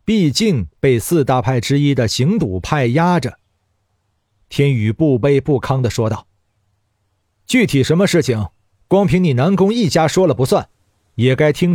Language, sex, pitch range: Chinese, male, 105-160 Hz